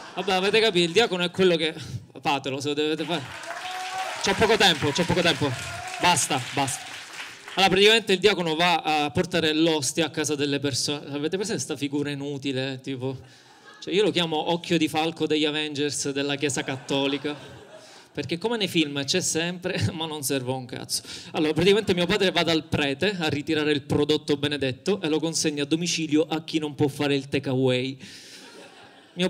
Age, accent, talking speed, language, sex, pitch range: 20-39, native, 180 wpm, Italian, male, 145-170 Hz